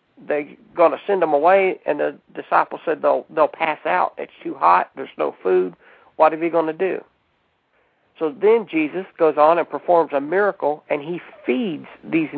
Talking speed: 190 wpm